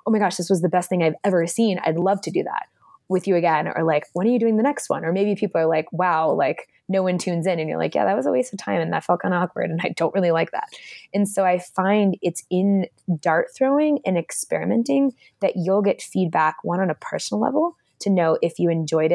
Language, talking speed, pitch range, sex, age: English, 265 wpm, 160-200 Hz, female, 20-39